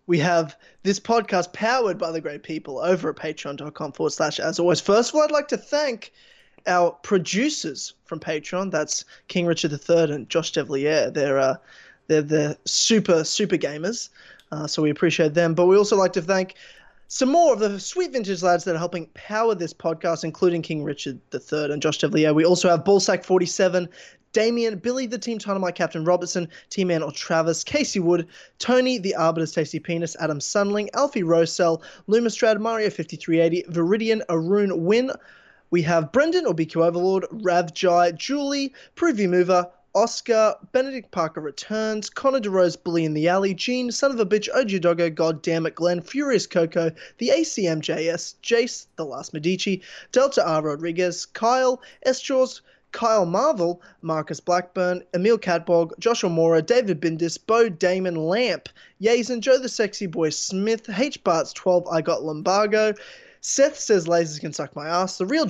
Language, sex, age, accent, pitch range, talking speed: English, male, 20-39, Australian, 165-220 Hz, 170 wpm